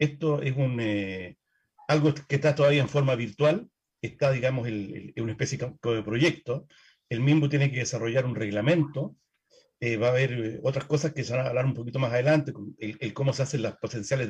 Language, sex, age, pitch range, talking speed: Spanish, male, 50-69, 130-165 Hz, 210 wpm